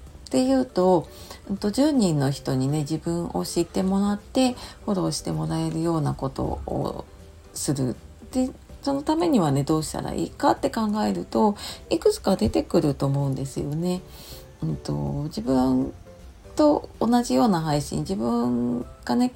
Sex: female